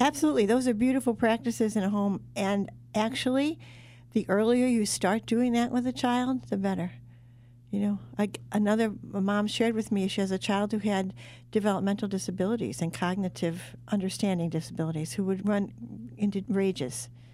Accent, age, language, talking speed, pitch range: American, 60-79, English, 160 wpm, 165-220 Hz